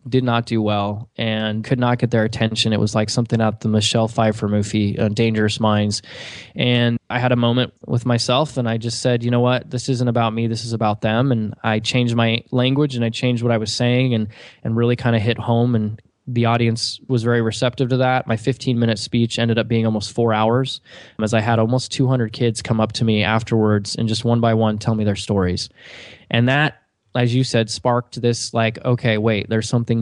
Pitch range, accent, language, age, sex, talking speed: 110-125 Hz, American, English, 20-39, male, 225 wpm